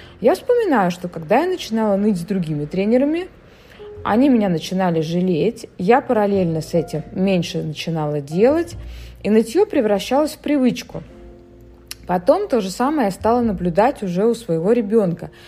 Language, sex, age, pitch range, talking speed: Russian, female, 20-39, 170-250 Hz, 145 wpm